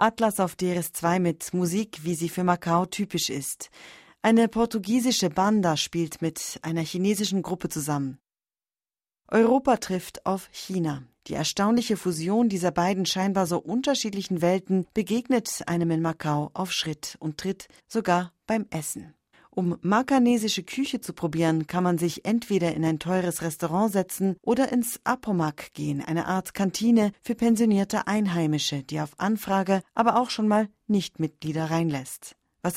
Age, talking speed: 40-59, 145 wpm